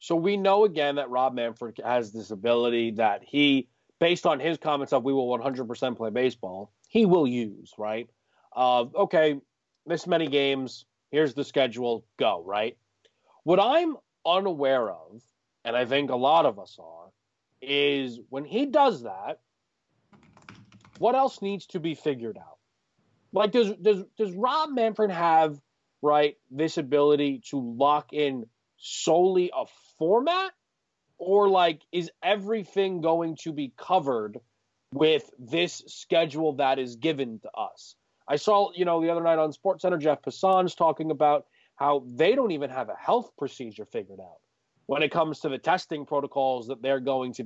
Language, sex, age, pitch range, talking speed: English, male, 30-49, 125-190 Hz, 160 wpm